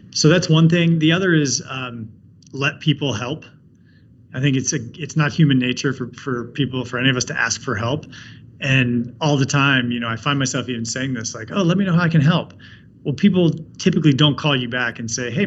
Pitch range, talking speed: 125-150 Hz, 235 wpm